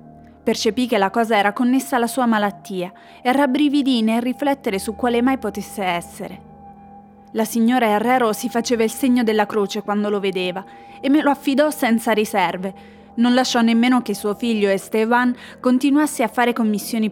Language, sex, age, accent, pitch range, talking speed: Italian, female, 20-39, native, 205-255 Hz, 165 wpm